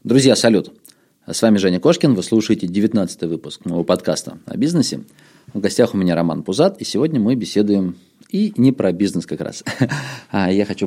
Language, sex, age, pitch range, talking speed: Russian, male, 20-39, 95-120 Hz, 175 wpm